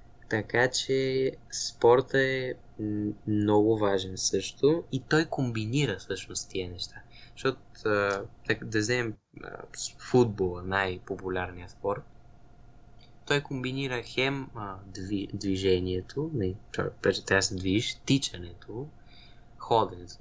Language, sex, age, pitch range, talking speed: Bulgarian, male, 20-39, 105-125 Hz, 85 wpm